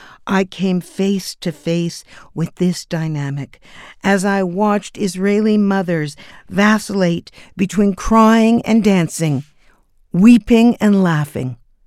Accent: American